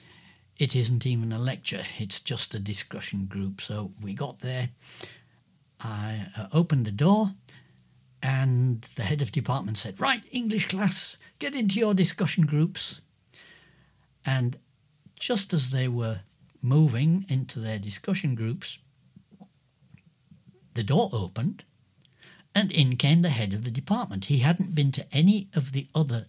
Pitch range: 125-175 Hz